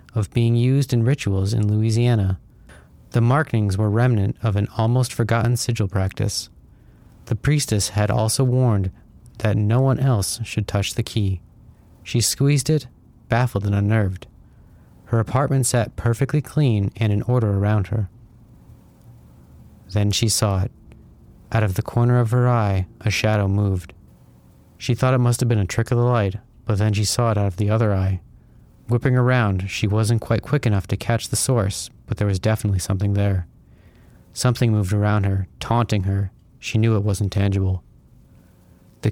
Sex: male